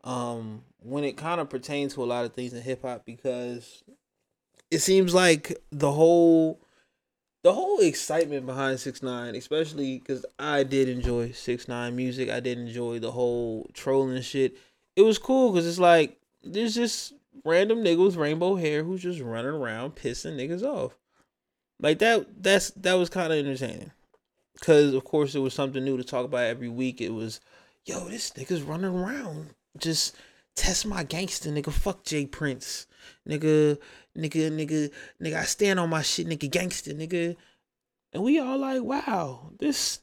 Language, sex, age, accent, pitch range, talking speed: English, male, 20-39, American, 130-185 Hz, 170 wpm